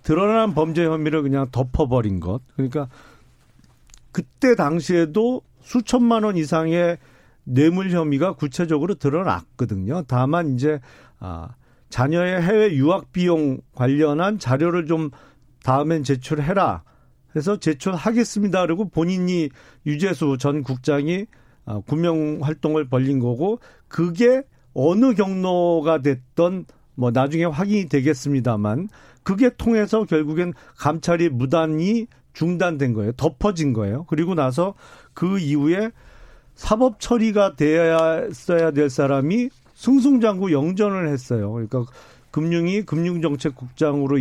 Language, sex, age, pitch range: Korean, male, 40-59, 140-185 Hz